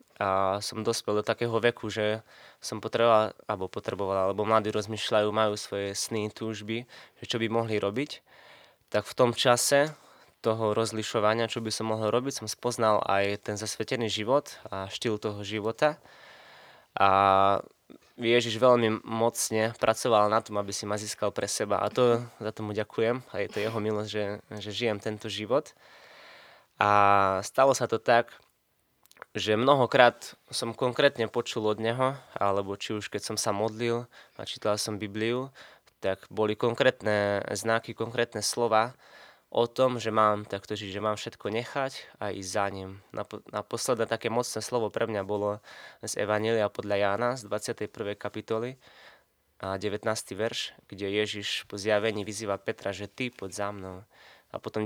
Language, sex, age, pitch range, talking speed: Slovak, male, 20-39, 105-115 Hz, 155 wpm